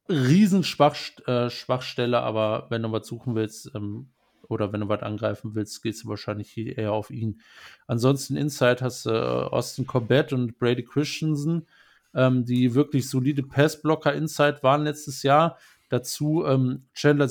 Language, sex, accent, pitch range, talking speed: German, male, German, 110-145 Hz, 155 wpm